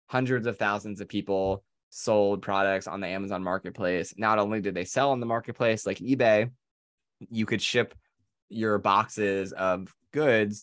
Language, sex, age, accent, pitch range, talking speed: English, male, 20-39, American, 95-105 Hz, 160 wpm